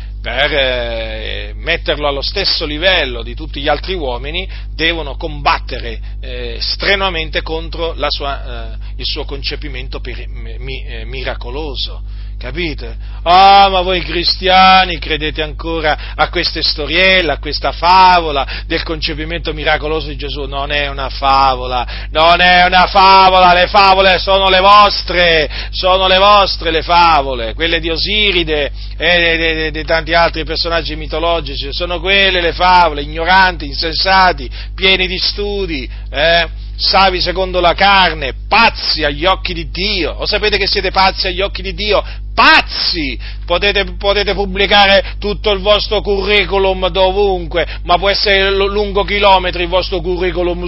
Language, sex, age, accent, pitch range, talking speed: Italian, male, 40-59, native, 140-190 Hz, 140 wpm